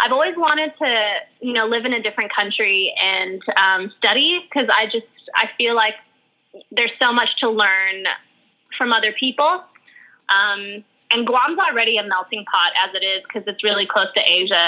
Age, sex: 20-39, female